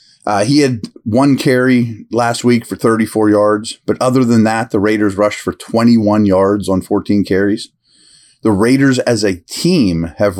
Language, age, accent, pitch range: English, 30-49, American, 105-145 Hz